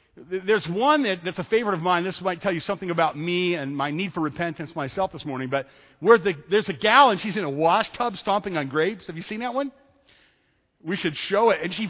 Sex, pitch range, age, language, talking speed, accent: male, 145-210 Hz, 50-69, English, 245 wpm, American